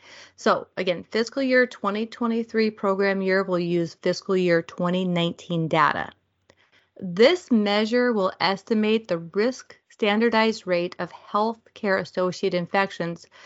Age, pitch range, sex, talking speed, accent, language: 30-49, 180-235 Hz, female, 115 wpm, American, English